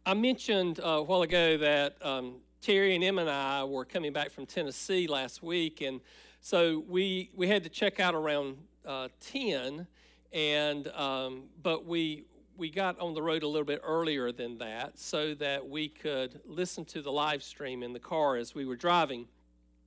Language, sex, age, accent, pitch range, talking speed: English, male, 50-69, American, 135-185 Hz, 190 wpm